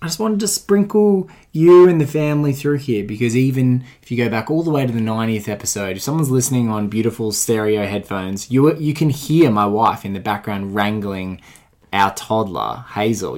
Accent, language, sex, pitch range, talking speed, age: Australian, English, male, 100-125 Hz, 195 wpm, 20-39